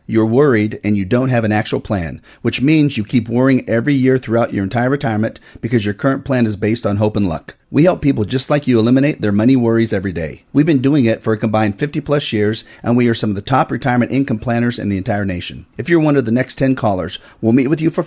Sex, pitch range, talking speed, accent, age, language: male, 110-135 Hz, 260 wpm, American, 40-59, English